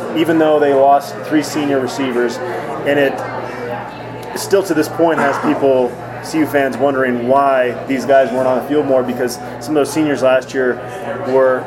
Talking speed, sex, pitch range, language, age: 175 wpm, male, 130-150 Hz, English, 20-39